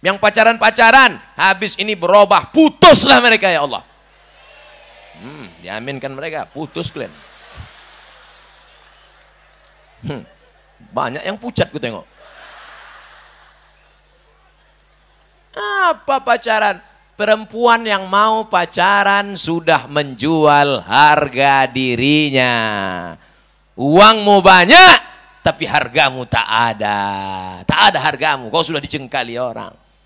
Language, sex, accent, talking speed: Indonesian, male, native, 90 wpm